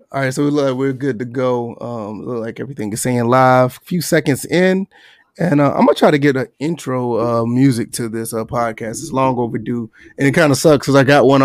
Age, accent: 20-39, American